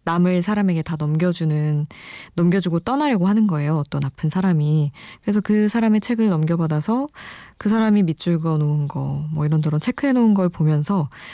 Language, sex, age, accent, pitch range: Korean, female, 20-39, native, 155-210 Hz